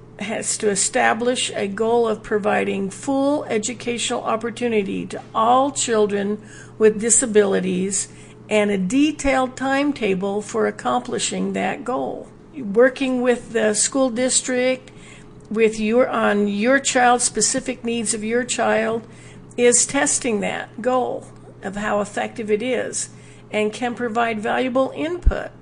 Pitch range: 210-255 Hz